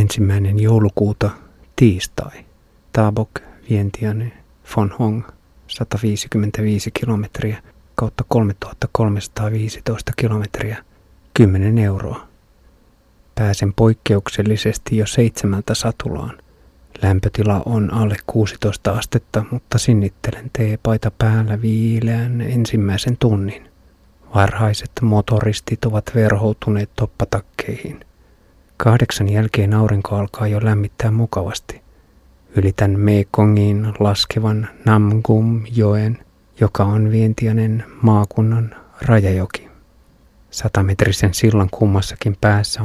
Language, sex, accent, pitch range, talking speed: Finnish, male, native, 100-110 Hz, 80 wpm